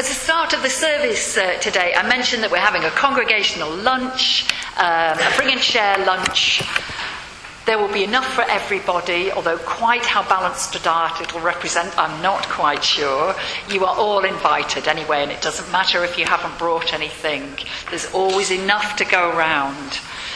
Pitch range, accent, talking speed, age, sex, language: 185-255 Hz, British, 175 wpm, 50-69, female, English